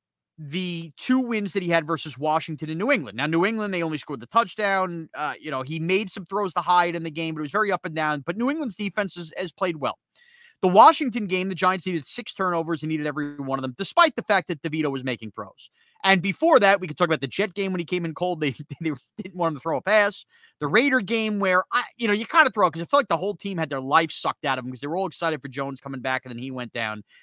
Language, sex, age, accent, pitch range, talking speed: English, male, 30-49, American, 160-220 Hz, 290 wpm